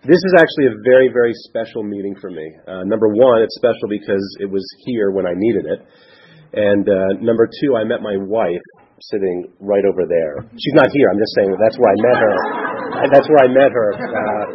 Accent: American